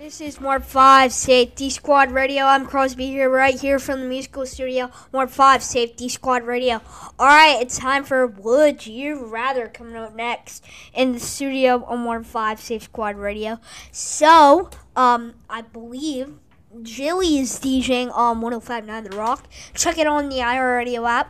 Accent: American